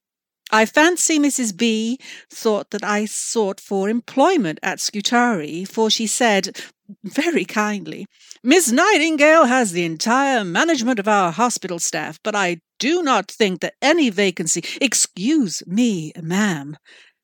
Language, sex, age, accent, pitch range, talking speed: English, female, 60-79, British, 170-230 Hz, 130 wpm